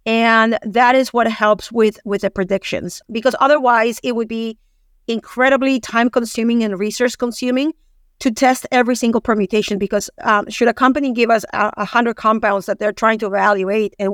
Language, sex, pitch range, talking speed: English, female, 210-245 Hz, 180 wpm